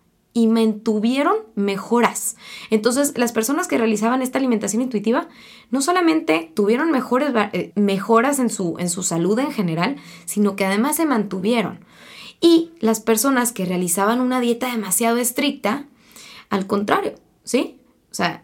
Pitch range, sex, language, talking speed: 210-265 Hz, female, Spanish, 135 wpm